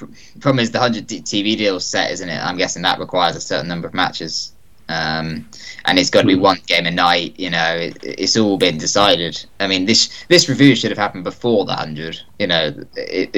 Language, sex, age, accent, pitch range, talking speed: English, male, 20-39, British, 90-125 Hz, 220 wpm